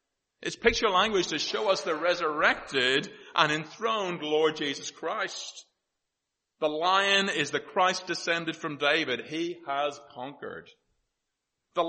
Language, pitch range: English, 150-210 Hz